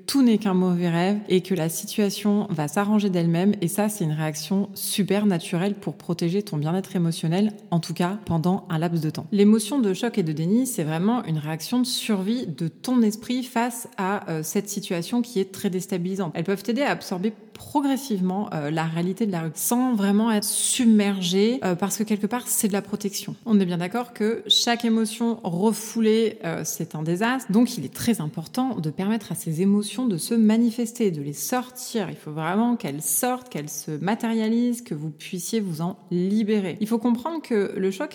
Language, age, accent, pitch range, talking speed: French, 20-39, French, 175-225 Hz, 205 wpm